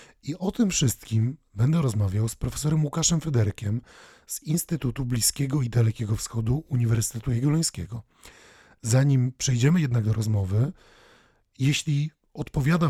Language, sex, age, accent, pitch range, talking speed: Polish, male, 40-59, native, 110-145 Hz, 115 wpm